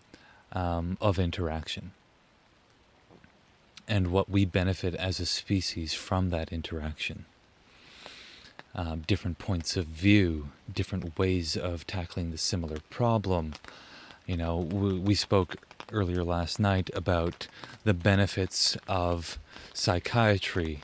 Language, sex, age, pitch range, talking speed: English, male, 30-49, 90-100 Hz, 110 wpm